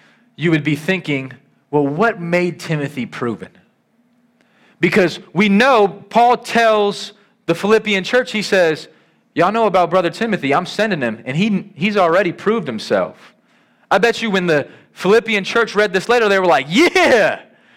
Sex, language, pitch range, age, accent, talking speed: male, English, 150-215 Hz, 30-49, American, 160 wpm